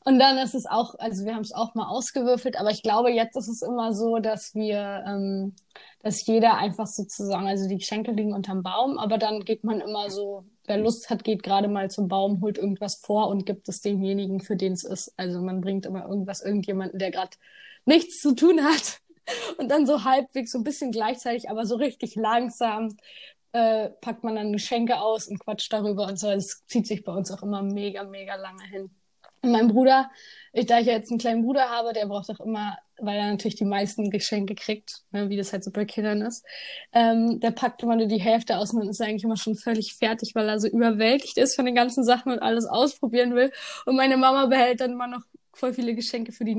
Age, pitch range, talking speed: 20-39, 200-235 Hz, 225 wpm